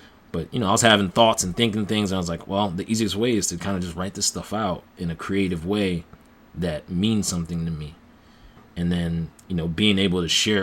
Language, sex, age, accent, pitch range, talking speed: English, male, 20-39, American, 85-100 Hz, 250 wpm